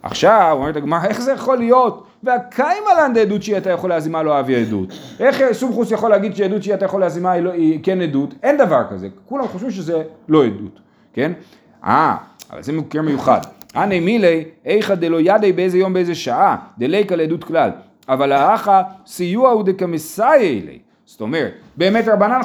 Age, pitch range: 40-59, 170-235 Hz